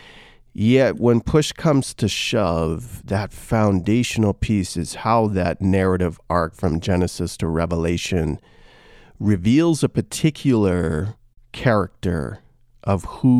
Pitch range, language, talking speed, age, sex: 95-120 Hz, English, 105 wpm, 40-59, male